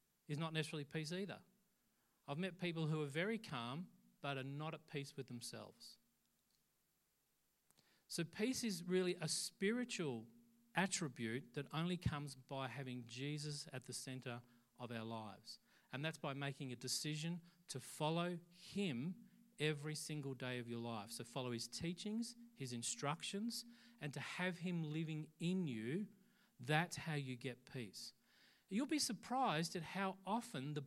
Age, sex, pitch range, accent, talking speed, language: 40-59, male, 140-190 Hz, Australian, 150 wpm, English